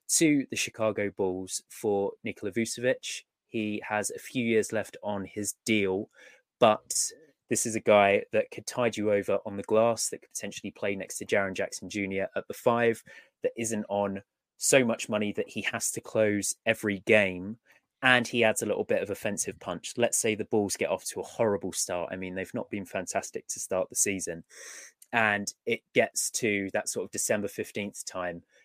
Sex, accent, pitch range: male, British, 100-115 Hz